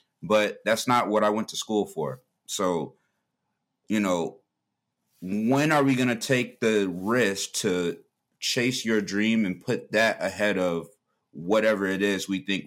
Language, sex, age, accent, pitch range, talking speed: English, male, 30-49, American, 90-105 Hz, 160 wpm